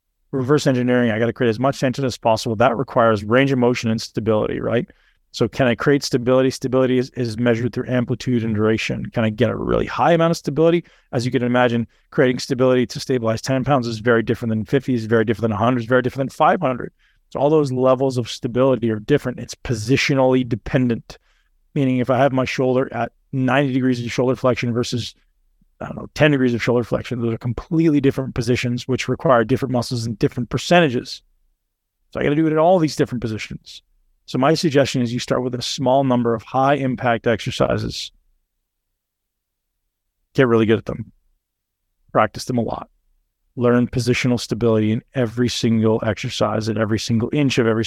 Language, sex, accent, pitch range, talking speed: English, male, American, 115-130 Hz, 200 wpm